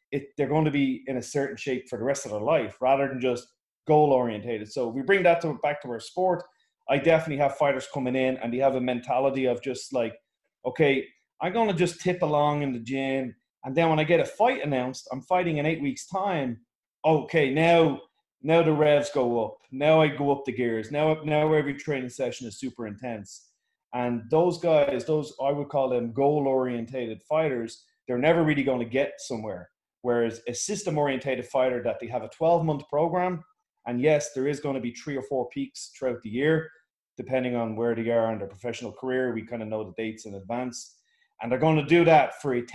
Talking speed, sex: 215 wpm, male